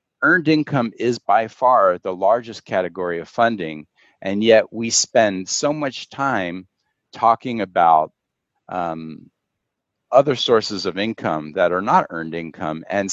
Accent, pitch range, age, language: American, 90-140 Hz, 50-69, English